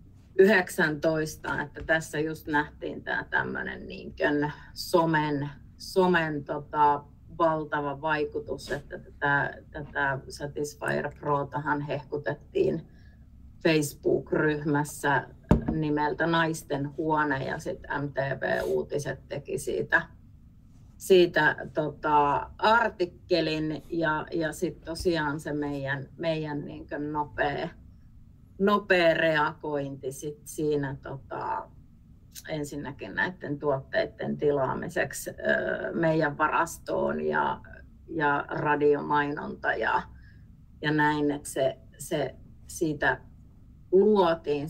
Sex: female